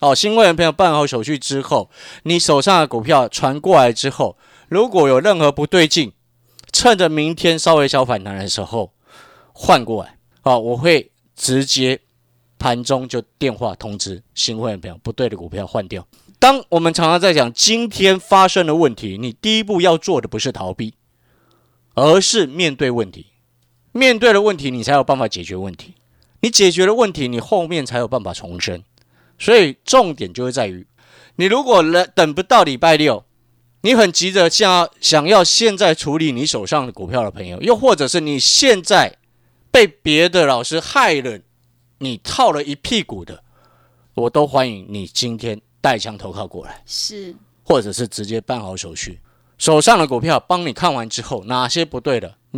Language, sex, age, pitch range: Chinese, male, 30-49, 115-165 Hz